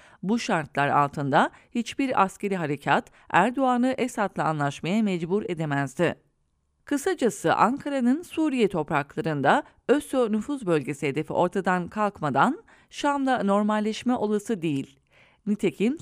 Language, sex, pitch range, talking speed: English, female, 160-240 Hz, 95 wpm